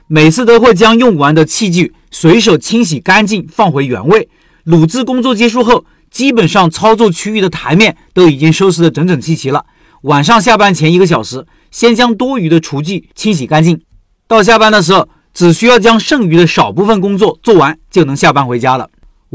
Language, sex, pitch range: Chinese, male, 160-225 Hz